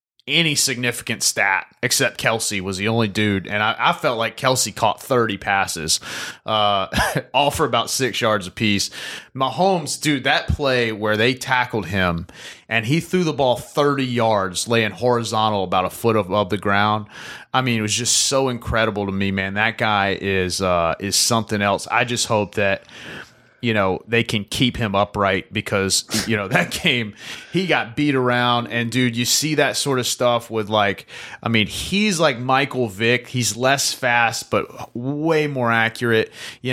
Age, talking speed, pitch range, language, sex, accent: 30-49, 180 wpm, 105-125 Hz, English, male, American